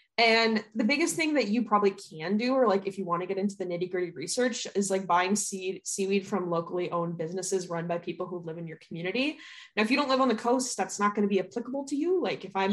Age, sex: 20-39, female